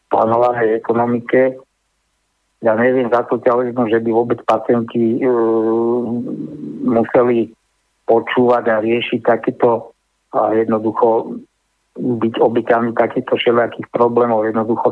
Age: 50-69